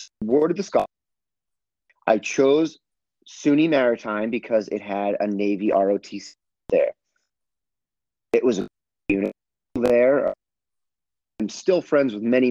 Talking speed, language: 120 wpm, English